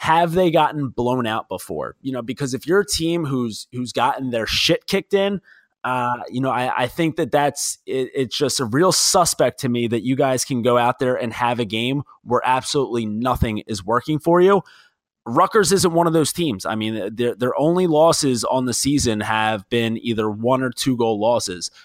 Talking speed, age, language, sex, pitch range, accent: 210 wpm, 20-39, English, male, 120-155 Hz, American